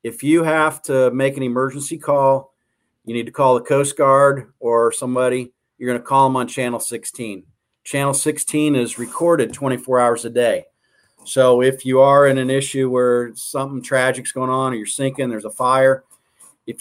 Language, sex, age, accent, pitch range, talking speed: English, male, 40-59, American, 120-140 Hz, 190 wpm